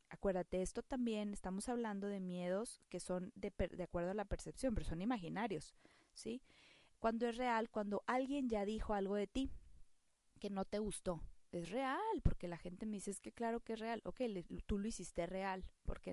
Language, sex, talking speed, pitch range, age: Spanish, female, 195 wpm, 175-210 Hz, 20-39